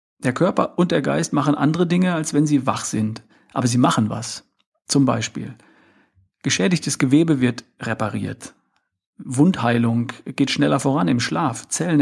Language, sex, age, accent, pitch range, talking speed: German, male, 50-69, German, 120-150 Hz, 150 wpm